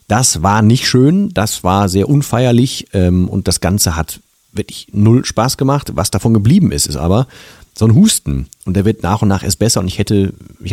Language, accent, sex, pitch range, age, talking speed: German, German, male, 80-110 Hz, 40-59, 215 wpm